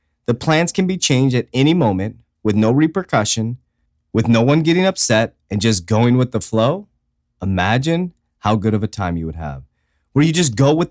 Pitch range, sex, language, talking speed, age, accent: 110-165 Hz, male, English, 200 wpm, 30-49, American